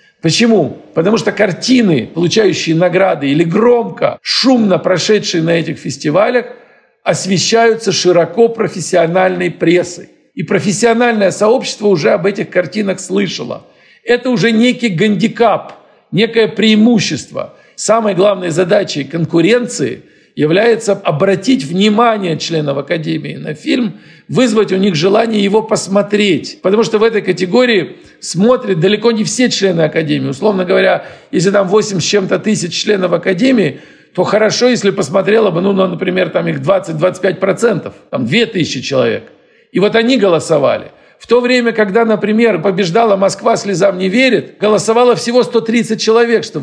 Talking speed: 130 wpm